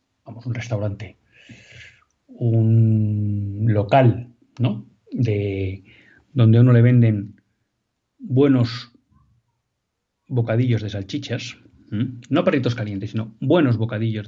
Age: 40-59